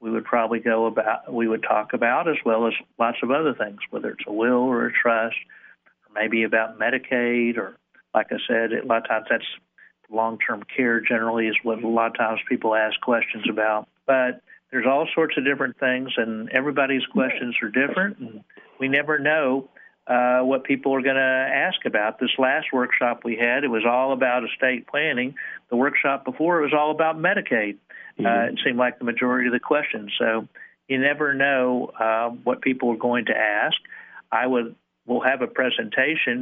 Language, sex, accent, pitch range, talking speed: English, male, American, 115-130 Hz, 195 wpm